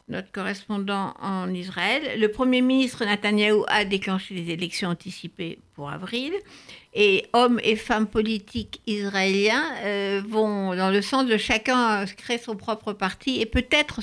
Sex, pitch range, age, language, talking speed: female, 190-240 Hz, 60-79, French, 145 wpm